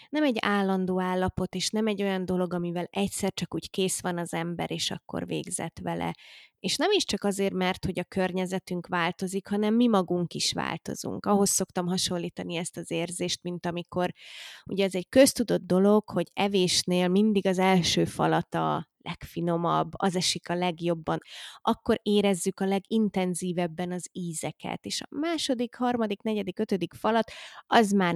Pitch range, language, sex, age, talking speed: 175-205 Hz, Hungarian, female, 20-39, 160 wpm